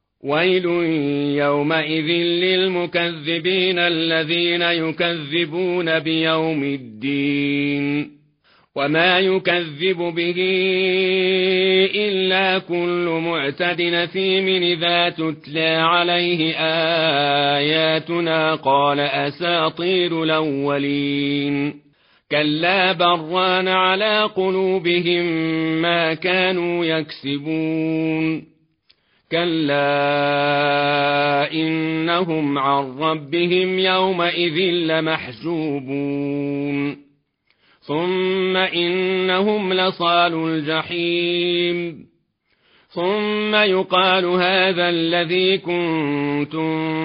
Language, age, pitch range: Arabic, 40-59, 155-180 Hz